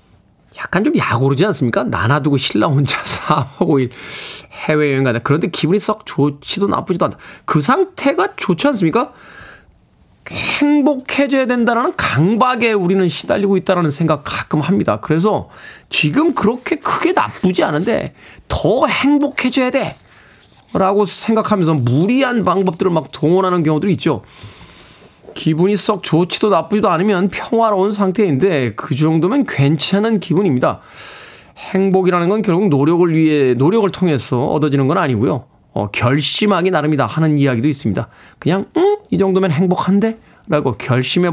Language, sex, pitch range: Korean, male, 135-195 Hz